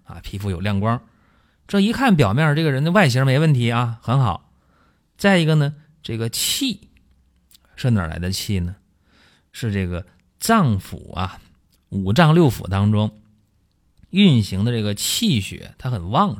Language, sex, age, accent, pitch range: Chinese, male, 30-49, native, 90-135 Hz